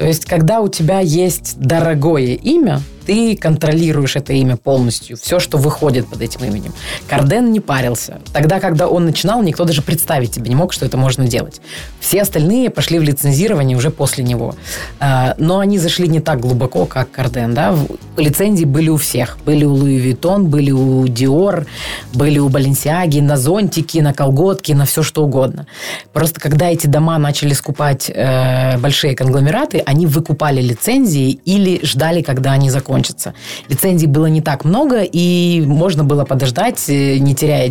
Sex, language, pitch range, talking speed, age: female, Ukrainian, 130-160 Hz, 160 wpm, 20-39